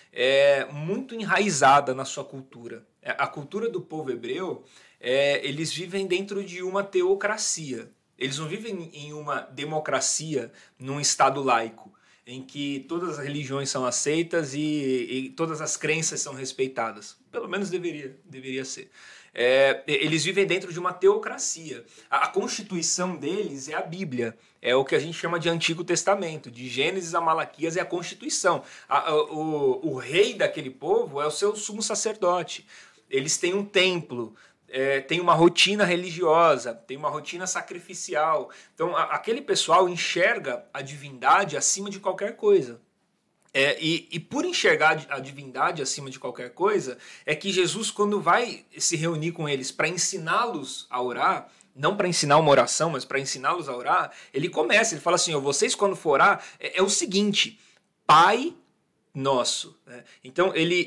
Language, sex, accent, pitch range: Portuguese, male, Brazilian, 145-195 Hz